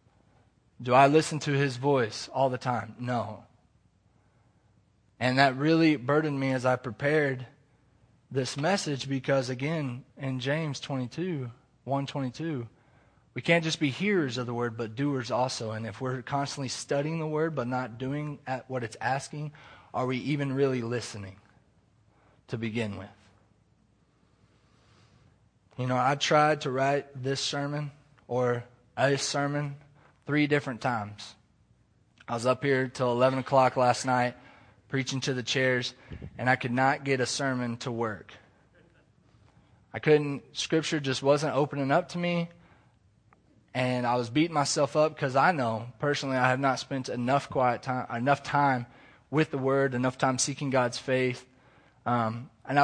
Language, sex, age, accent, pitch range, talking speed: English, male, 20-39, American, 120-140 Hz, 150 wpm